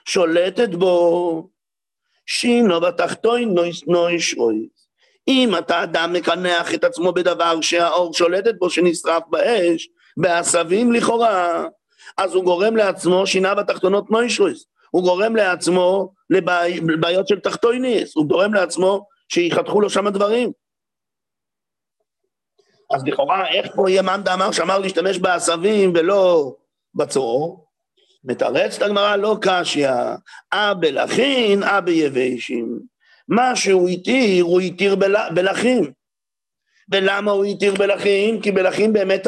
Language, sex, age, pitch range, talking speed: English, male, 50-69, 175-215 Hz, 90 wpm